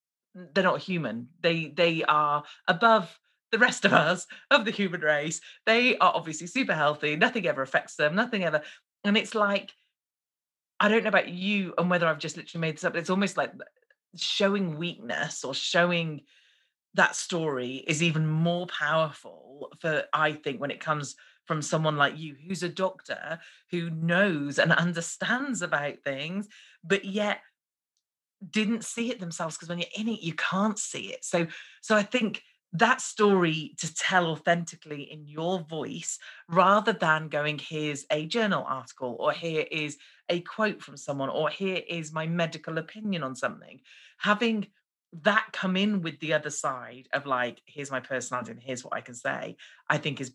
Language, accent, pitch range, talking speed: English, British, 150-195 Hz, 175 wpm